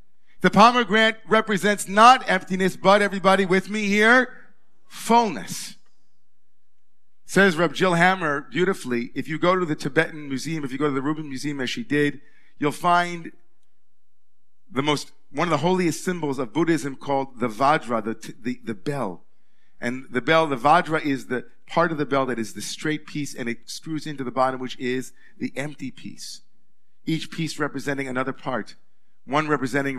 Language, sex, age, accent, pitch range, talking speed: English, male, 50-69, American, 140-185 Hz, 170 wpm